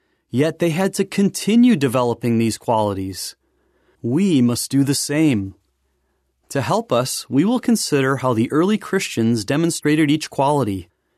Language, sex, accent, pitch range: English, male, American, 115-175 Hz